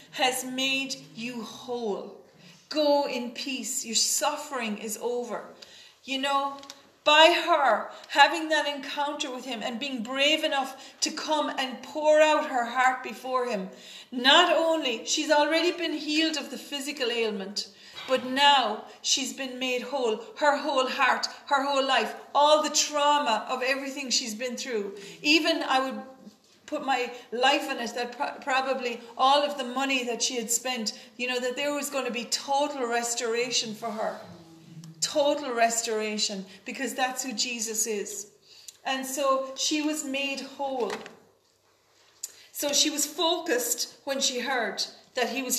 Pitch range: 240-285 Hz